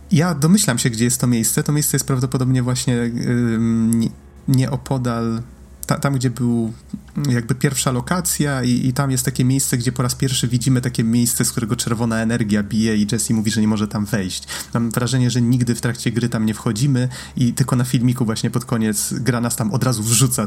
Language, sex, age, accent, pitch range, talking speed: Polish, male, 30-49, native, 110-130 Hz, 200 wpm